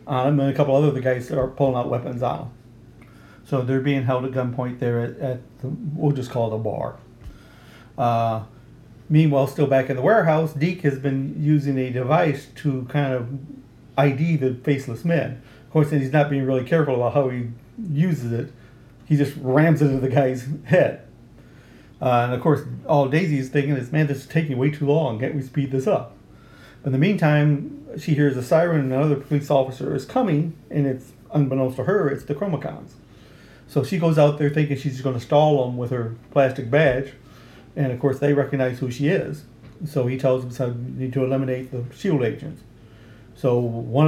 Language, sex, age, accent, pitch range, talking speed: English, male, 40-59, American, 125-145 Hz, 205 wpm